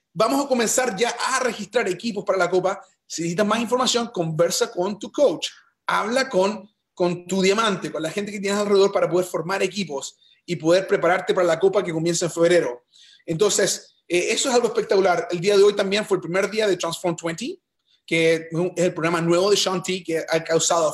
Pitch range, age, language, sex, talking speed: 170-215 Hz, 30-49, Spanish, male, 205 wpm